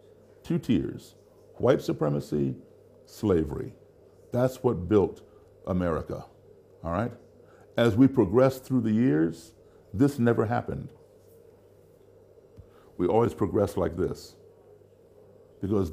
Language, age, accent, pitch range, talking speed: Polish, 60-79, American, 100-130 Hz, 100 wpm